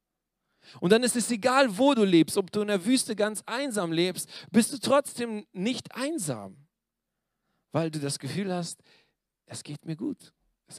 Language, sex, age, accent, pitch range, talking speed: German, male, 40-59, German, 125-170 Hz, 170 wpm